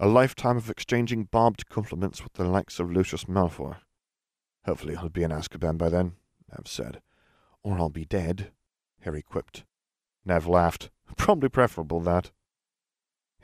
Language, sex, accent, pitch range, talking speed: English, male, British, 85-110 Hz, 145 wpm